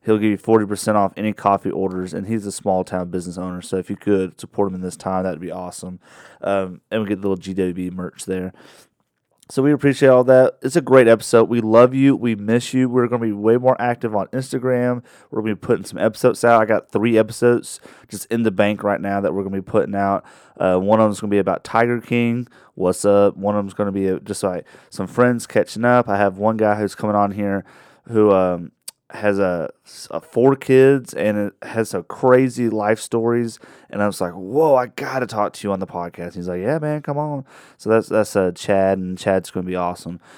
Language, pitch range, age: English, 100-120 Hz, 30-49